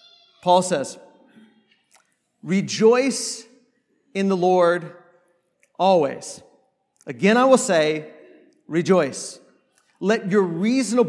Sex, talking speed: male, 75 wpm